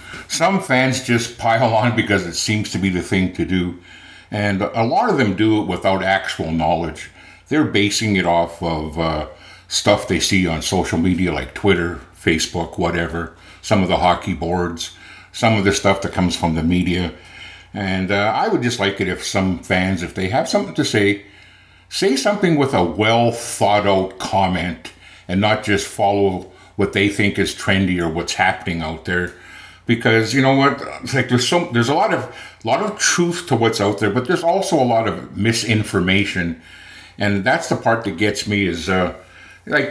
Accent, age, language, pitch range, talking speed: American, 60-79, English, 90-115 Hz, 190 wpm